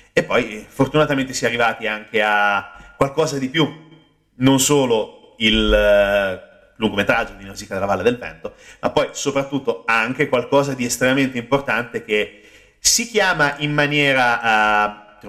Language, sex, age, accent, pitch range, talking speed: Italian, male, 30-49, native, 110-150 Hz, 140 wpm